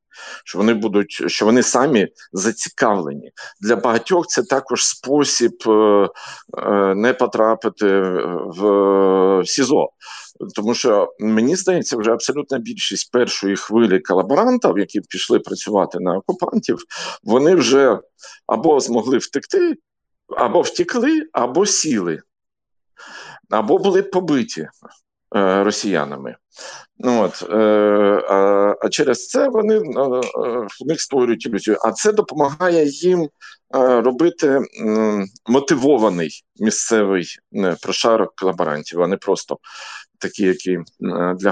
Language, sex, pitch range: Ukrainian, male, 100-145 Hz